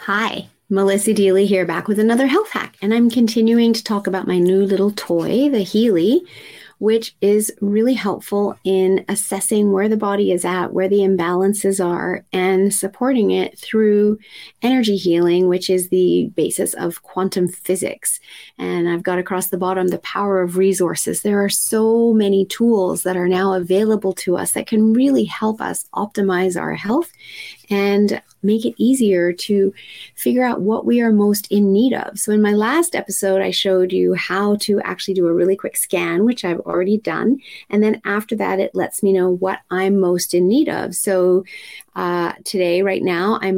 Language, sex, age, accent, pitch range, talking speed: English, female, 30-49, American, 185-215 Hz, 180 wpm